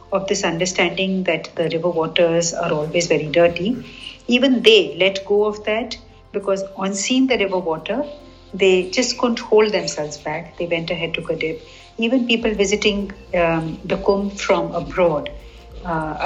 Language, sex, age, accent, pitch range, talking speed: English, female, 60-79, Indian, 170-220 Hz, 160 wpm